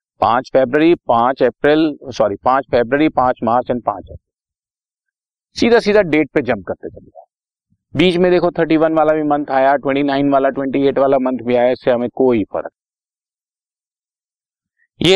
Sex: male